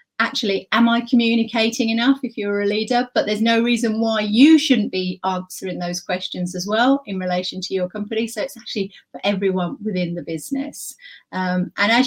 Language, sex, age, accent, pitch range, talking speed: English, female, 30-49, British, 185-230 Hz, 190 wpm